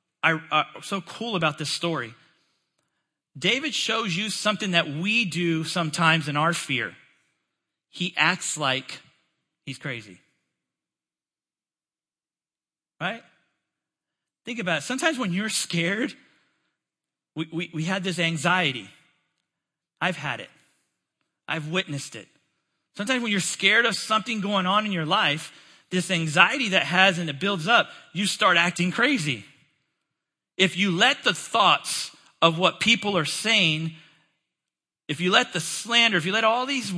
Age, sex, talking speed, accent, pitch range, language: 40-59, male, 140 wpm, American, 160-215 Hz, English